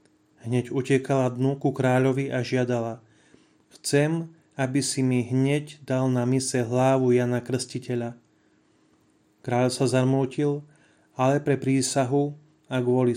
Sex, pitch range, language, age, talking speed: male, 125-140 Hz, Slovak, 30-49, 115 wpm